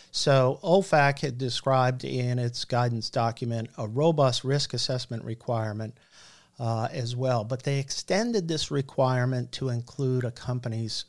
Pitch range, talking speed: 120-140 Hz, 135 wpm